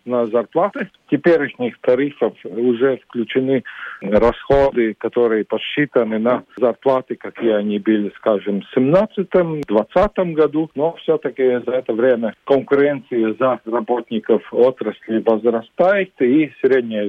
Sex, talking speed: male, 105 wpm